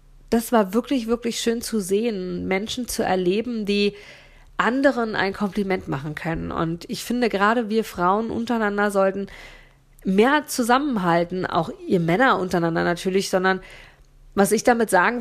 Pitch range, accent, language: 165-215 Hz, German, German